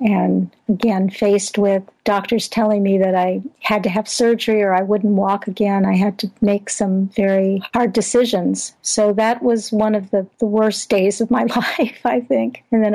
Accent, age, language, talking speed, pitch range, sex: American, 50-69, English, 195 wpm, 205-230 Hz, female